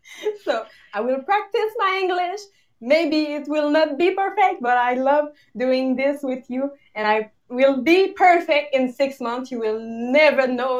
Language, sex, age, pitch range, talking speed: English, female, 20-39, 245-310 Hz, 170 wpm